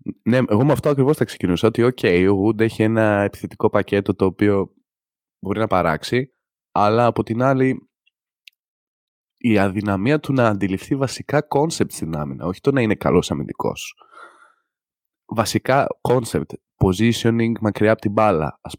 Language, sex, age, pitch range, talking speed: Greek, male, 20-39, 100-130 Hz, 150 wpm